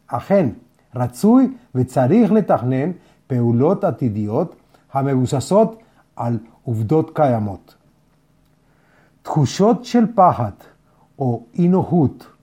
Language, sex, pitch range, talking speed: Hebrew, male, 130-170 Hz, 70 wpm